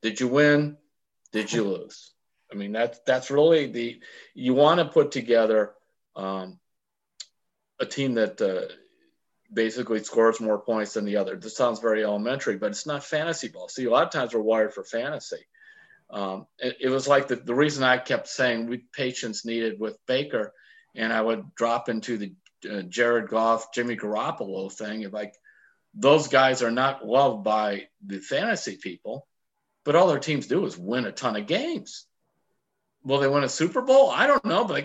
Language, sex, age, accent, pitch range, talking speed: English, male, 50-69, American, 115-160 Hz, 185 wpm